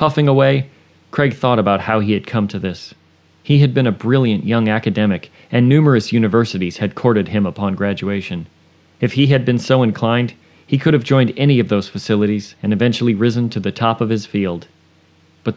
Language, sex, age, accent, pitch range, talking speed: English, male, 40-59, American, 95-125 Hz, 195 wpm